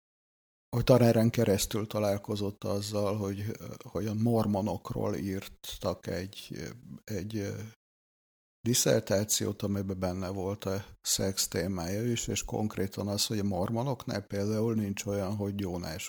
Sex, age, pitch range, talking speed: male, 60-79, 100-115 Hz, 110 wpm